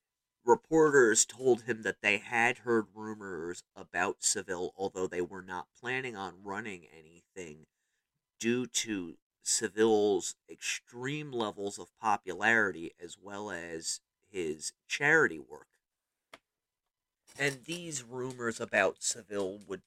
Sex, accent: male, American